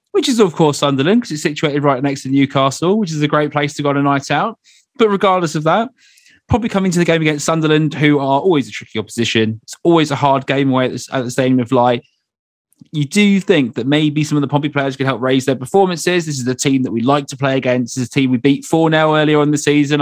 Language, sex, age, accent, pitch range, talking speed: English, male, 20-39, British, 130-160 Hz, 270 wpm